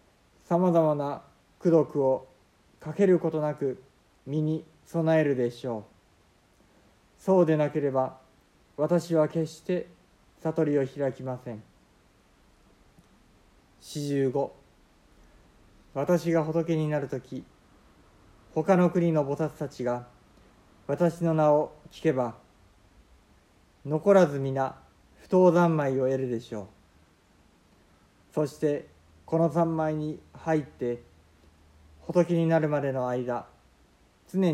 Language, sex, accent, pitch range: Japanese, male, native, 110-160 Hz